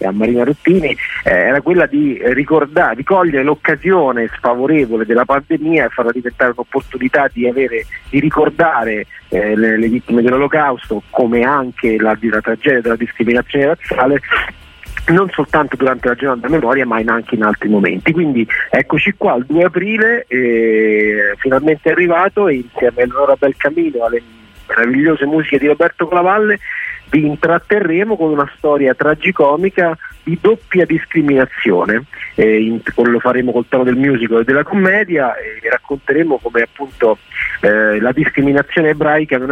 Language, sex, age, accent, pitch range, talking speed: Italian, male, 40-59, native, 120-170 Hz, 140 wpm